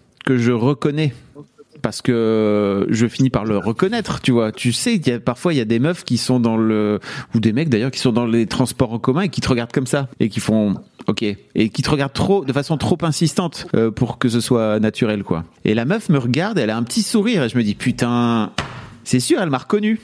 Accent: French